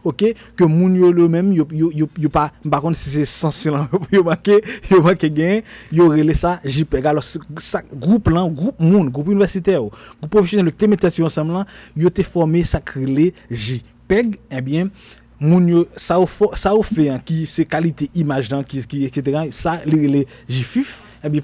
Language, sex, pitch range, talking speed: French, male, 145-185 Hz, 75 wpm